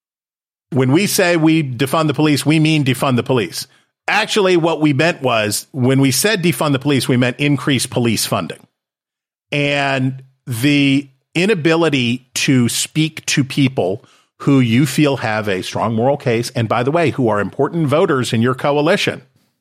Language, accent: English, American